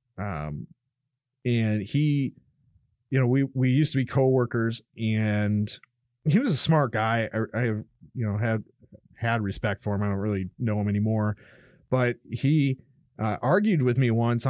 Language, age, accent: English, 30-49, American